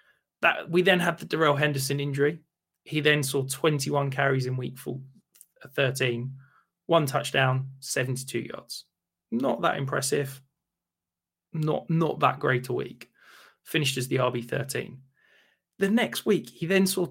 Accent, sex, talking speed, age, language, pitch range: British, male, 145 wpm, 20-39, English, 130-155 Hz